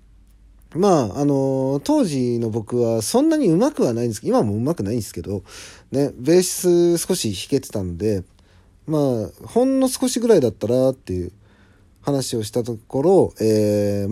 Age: 40-59